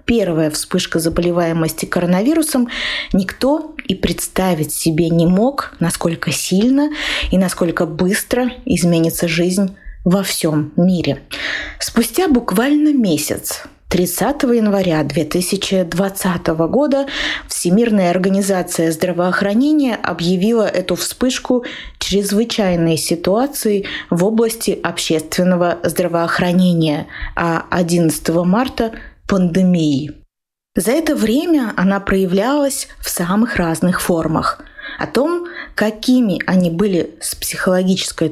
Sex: female